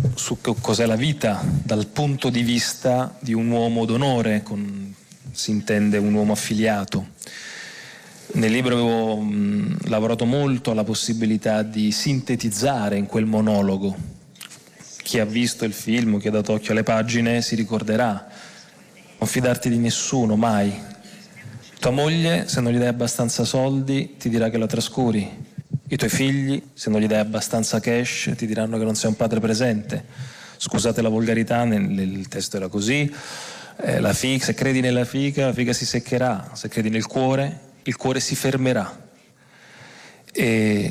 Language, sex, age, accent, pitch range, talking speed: English, male, 30-49, Italian, 110-130 Hz, 155 wpm